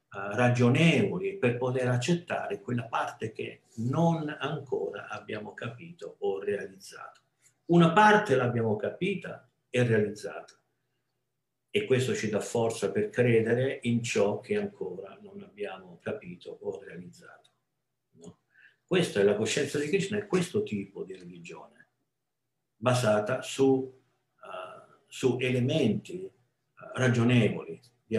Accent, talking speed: native, 110 wpm